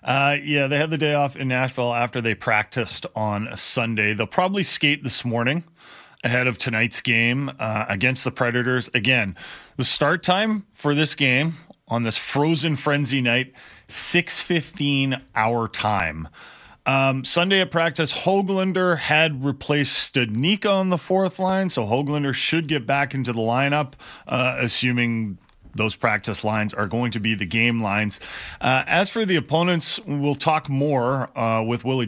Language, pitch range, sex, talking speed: English, 120-165 Hz, male, 160 wpm